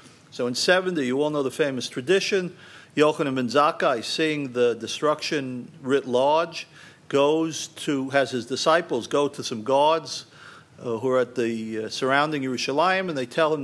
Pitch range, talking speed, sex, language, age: 135-170 Hz, 165 wpm, male, English, 50-69